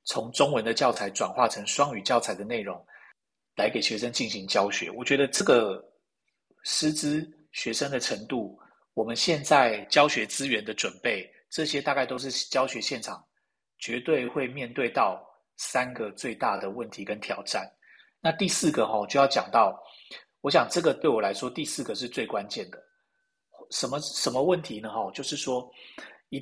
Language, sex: Chinese, male